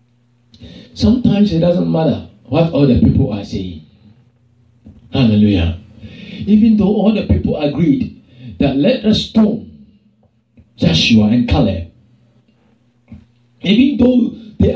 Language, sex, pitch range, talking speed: English, male, 185-265 Hz, 105 wpm